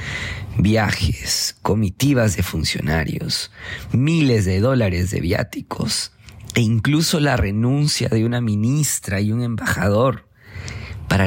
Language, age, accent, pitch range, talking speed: Spanish, 40-59, Mexican, 100-120 Hz, 105 wpm